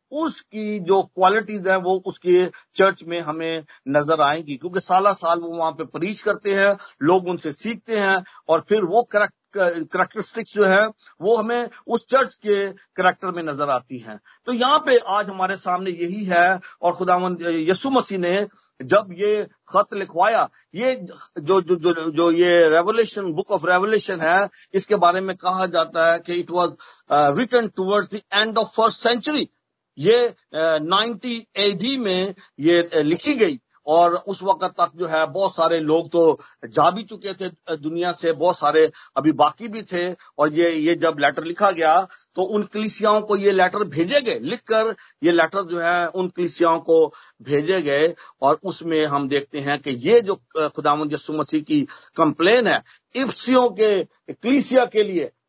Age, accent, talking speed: 50-69, native, 170 wpm